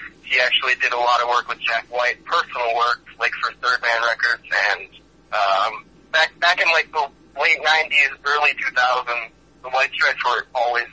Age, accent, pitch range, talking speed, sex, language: 30-49, American, 125-145 Hz, 185 wpm, male, English